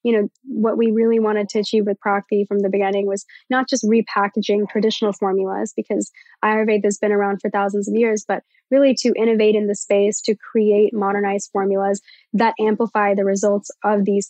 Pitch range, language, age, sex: 200-225 Hz, English, 10-29, female